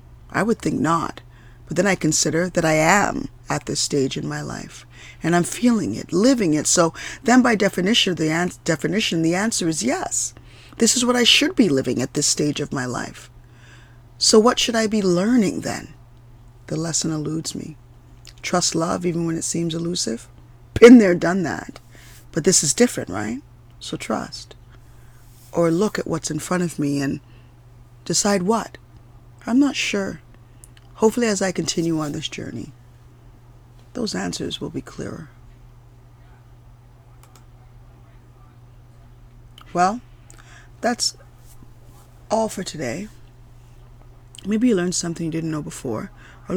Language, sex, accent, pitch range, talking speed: English, female, American, 120-180 Hz, 150 wpm